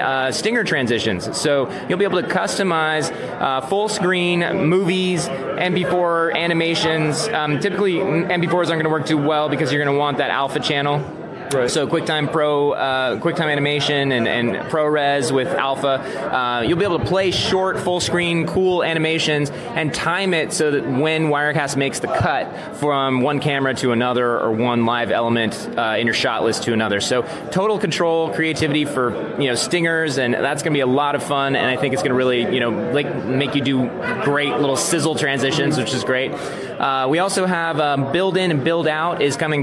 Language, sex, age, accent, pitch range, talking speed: English, male, 20-39, American, 130-165 Hz, 190 wpm